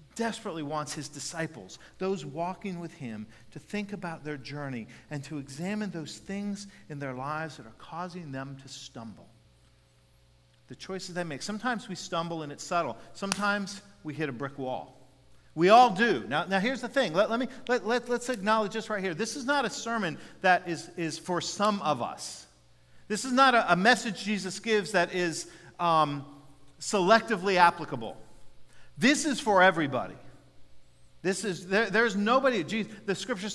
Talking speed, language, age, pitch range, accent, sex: 165 wpm, English, 50-69, 140-205 Hz, American, male